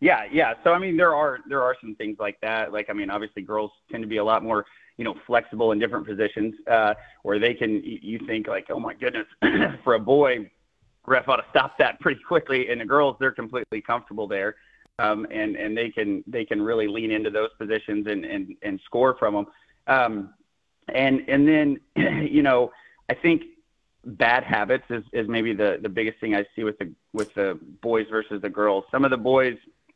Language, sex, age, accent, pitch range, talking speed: English, male, 30-49, American, 105-135 Hz, 210 wpm